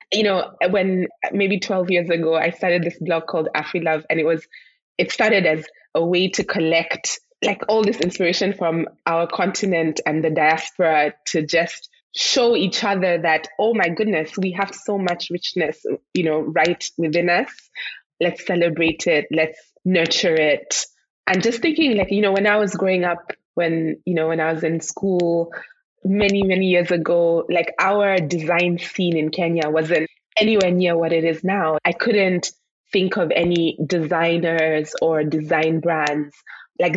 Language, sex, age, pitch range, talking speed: English, female, 20-39, 160-195 Hz, 170 wpm